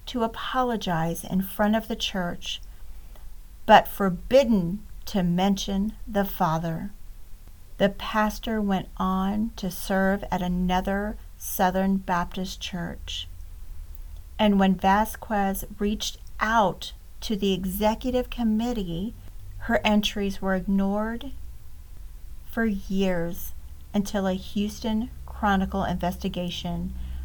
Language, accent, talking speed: English, American, 95 wpm